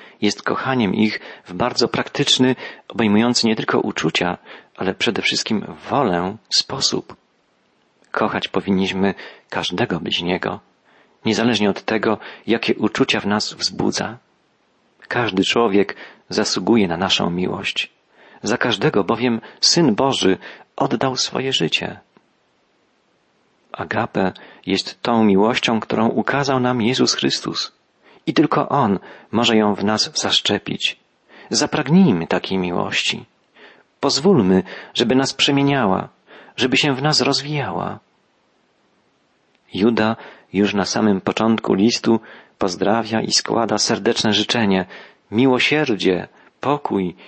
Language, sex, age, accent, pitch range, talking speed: Polish, male, 40-59, native, 100-130 Hz, 105 wpm